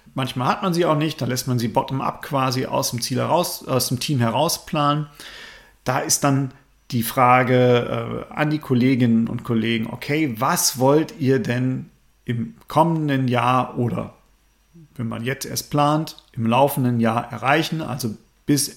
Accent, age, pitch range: German, 40-59, 120-145 Hz